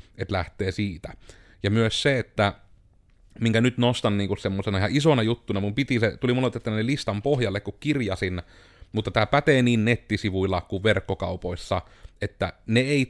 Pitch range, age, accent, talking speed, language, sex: 95-120 Hz, 30-49, native, 155 wpm, Finnish, male